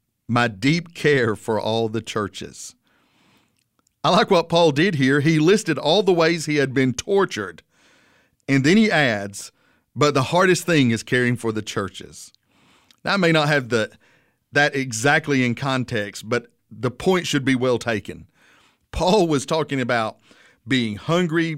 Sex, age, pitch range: male, 50-69, 115-150 Hz